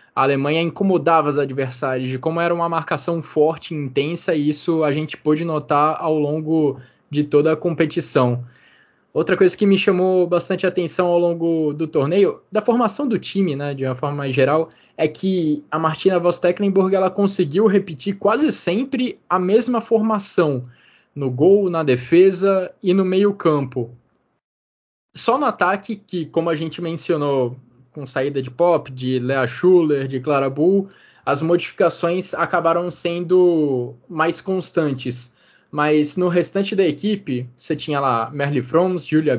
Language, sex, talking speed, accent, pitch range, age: Portuguese, male, 155 wpm, Brazilian, 150-195 Hz, 20-39